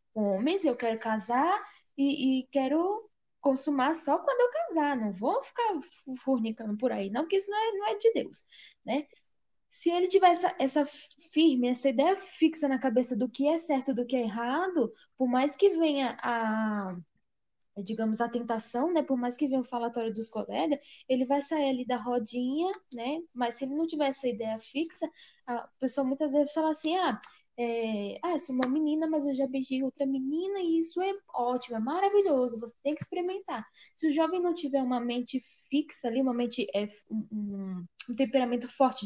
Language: Portuguese